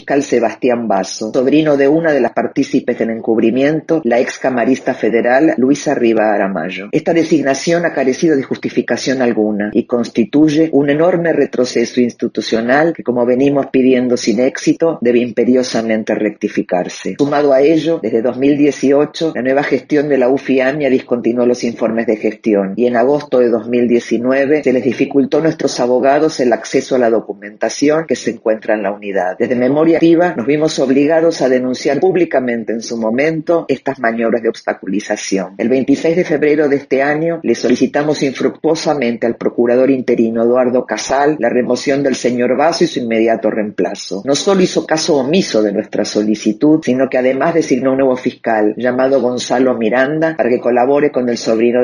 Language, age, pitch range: Spanish, 50-69, 115-145 Hz